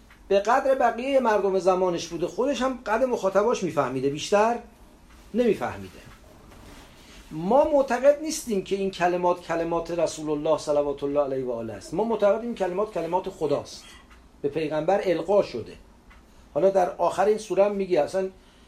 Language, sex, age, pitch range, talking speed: English, male, 40-59, 170-220 Hz, 140 wpm